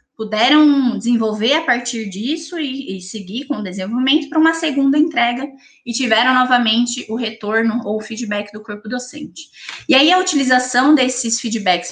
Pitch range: 215-280 Hz